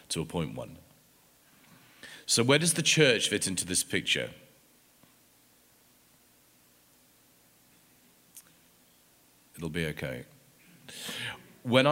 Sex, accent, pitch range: male, British, 85-95 Hz